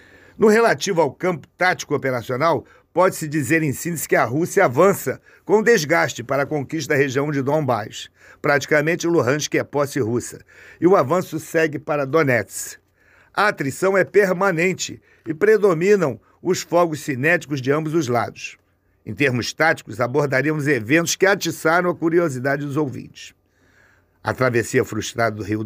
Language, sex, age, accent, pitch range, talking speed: Portuguese, male, 50-69, Brazilian, 125-170 Hz, 145 wpm